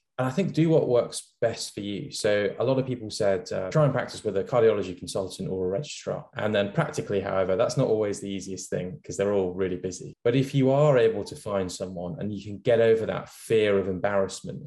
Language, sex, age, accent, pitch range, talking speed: English, male, 20-39, British, 100-125 Hz, 235 wpm